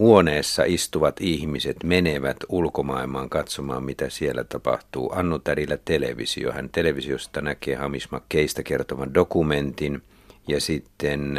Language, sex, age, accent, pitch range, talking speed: Finnish, male, 50-69, native, 70-90 Hz, 105 wpm